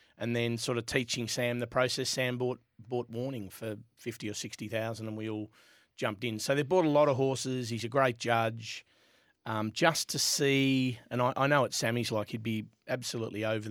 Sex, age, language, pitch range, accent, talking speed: male, 30-49, English, 115-130 Hz, Australian, 205 wpm